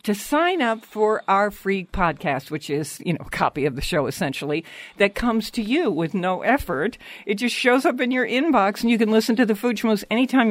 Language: English